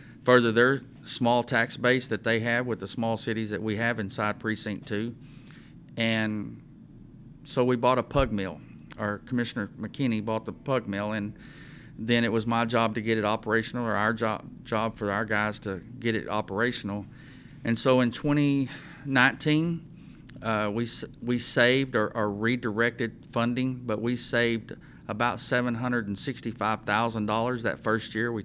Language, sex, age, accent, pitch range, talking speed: English, male, 40-59, American, 110-125 Hz, 155 wpm